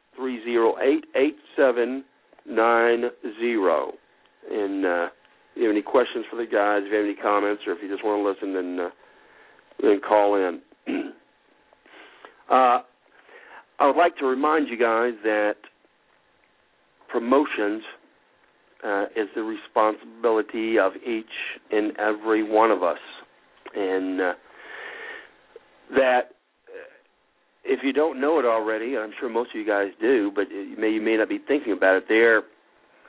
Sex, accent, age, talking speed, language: male, American, 50-69, 150 wpm, English